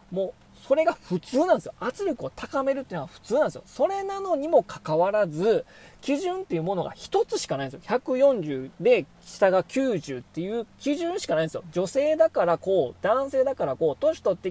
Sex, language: male, Japanese